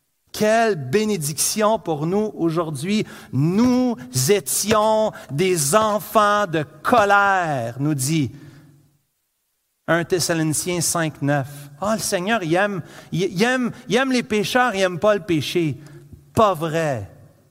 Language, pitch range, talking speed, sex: French, 160-235 Hz, 125 wpm, male